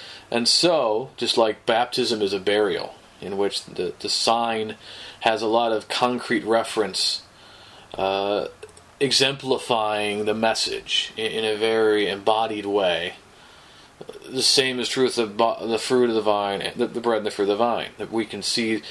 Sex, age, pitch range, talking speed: male, 30-49, 100-120 Hz, 165 wpm